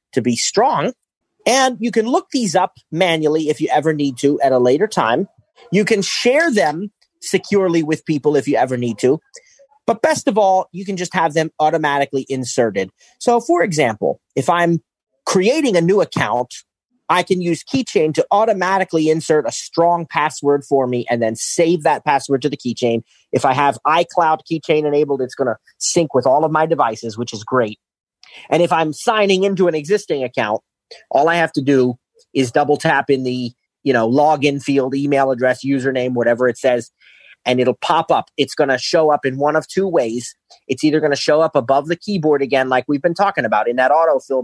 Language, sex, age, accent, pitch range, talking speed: English, male, 30-49, American, 130-170 Hz, 200 wpm